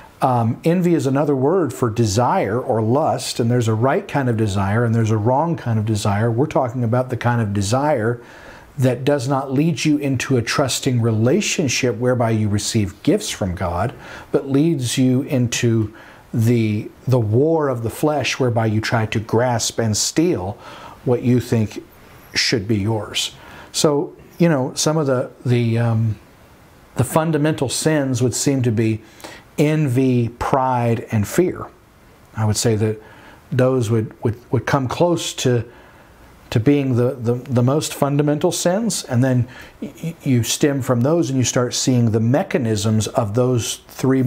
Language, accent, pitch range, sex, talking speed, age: English, American, 115-140 Hz, male, 165 wpm, 50-69